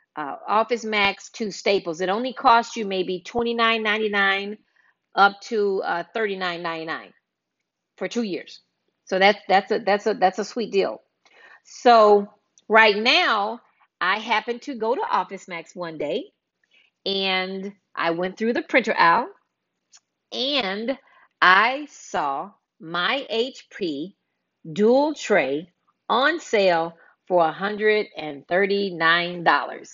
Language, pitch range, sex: English, 190-235 Hz, female